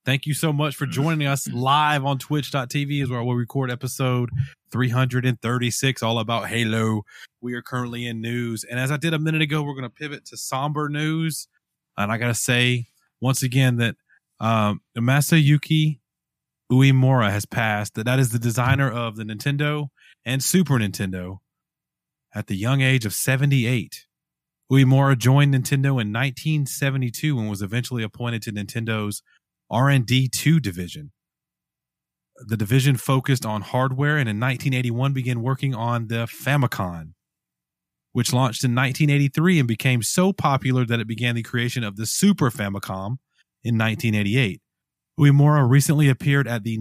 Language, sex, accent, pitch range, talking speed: English, male, American, 115-140 Hz, 155 wpm